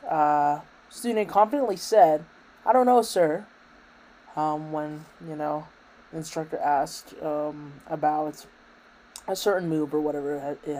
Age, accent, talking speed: 20-39, American, 130 wpm